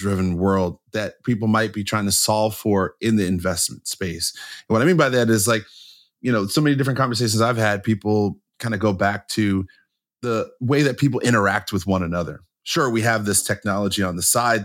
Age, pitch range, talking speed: 30-49, 100-120 Hz, 215 wpm